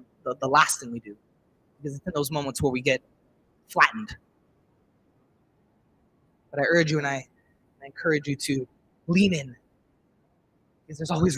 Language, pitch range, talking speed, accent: English, 135-165 Hz, 165 wpm, American